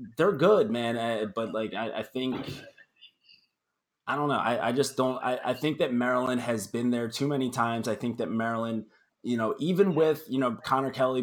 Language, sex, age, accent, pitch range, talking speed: English, male, 20-39, American, 110-130 Hz, 205 wpm